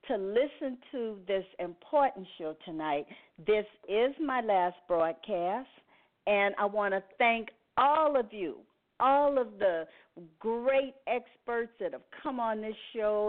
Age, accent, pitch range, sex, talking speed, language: 50-69, American, 190-270 Hz, female, 140 wpm, English